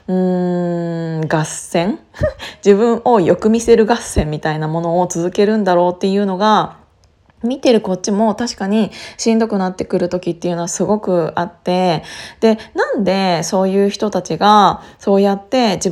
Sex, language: female, Japanese